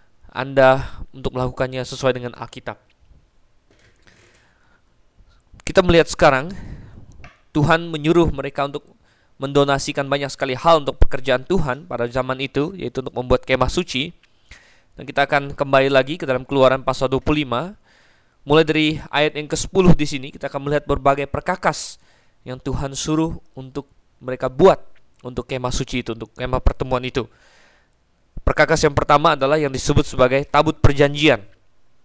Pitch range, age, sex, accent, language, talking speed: 125-145 Hz, 20-39, male, native, Indonesian, 135 wpm